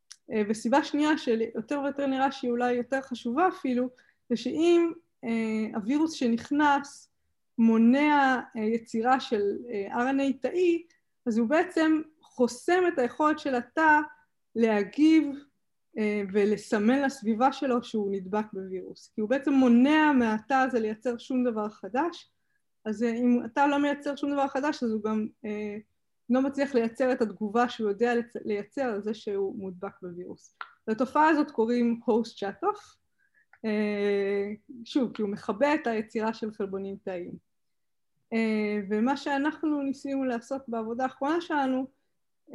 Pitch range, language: 215-275 Hz, Hebrew